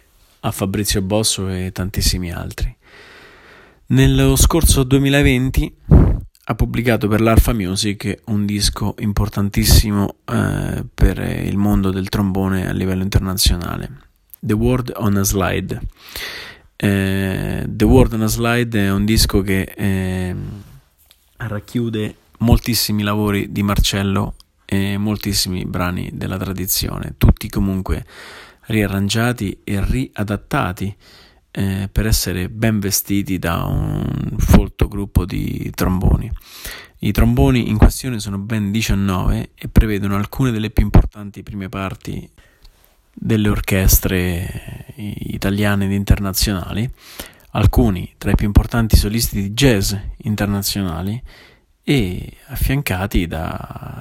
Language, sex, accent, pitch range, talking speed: Italian, male, native, 95-110 Hz, 110 wpm